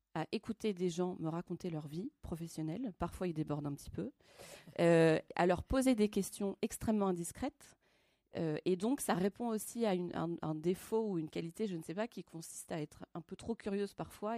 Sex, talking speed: female, 210 wpm